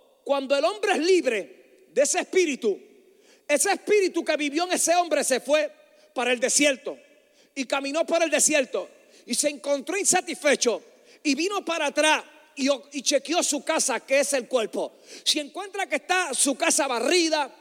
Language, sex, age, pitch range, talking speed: Spanish, male, 40-59, 290-360 Hz, 165 wpm